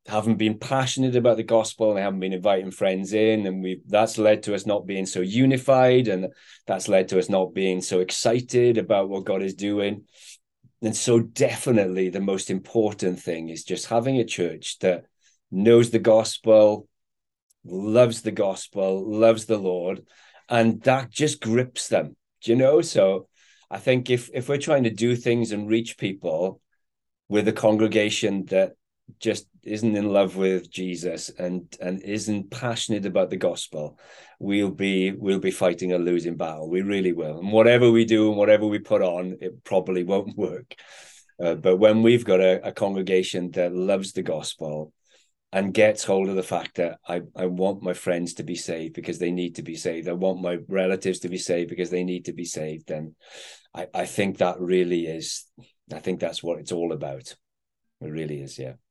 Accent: British